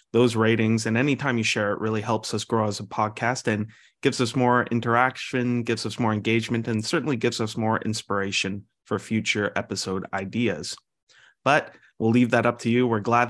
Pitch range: 110-140 Hz